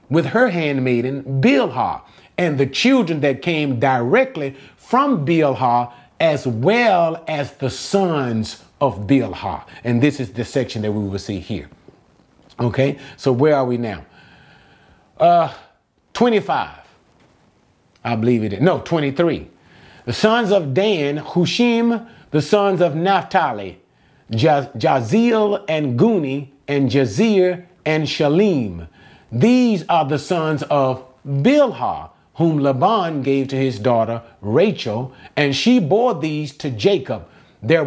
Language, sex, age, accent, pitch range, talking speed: English, male, 40-59, American, 120-175 Hz, 125 wpm